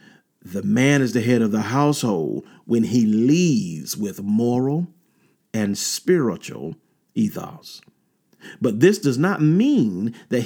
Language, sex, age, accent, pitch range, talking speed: English, male, 40-59, American, 130-170 Hz, 125 wpm